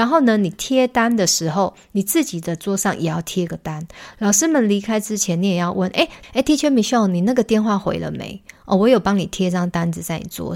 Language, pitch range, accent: Chinese, 175-220 Hz, native